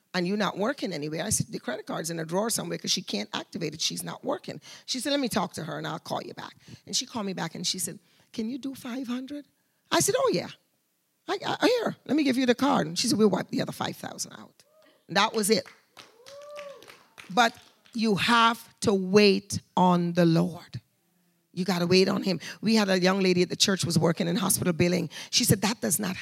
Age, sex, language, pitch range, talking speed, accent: 40-59, female, English, 180-245 Hz, 230 wpm, American